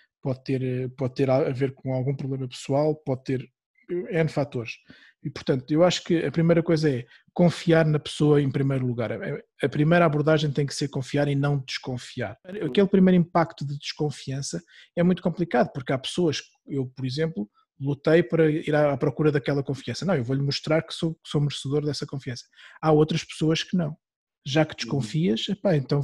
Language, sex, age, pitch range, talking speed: English, male, 20-39, 135-165 Hz, 180 wpm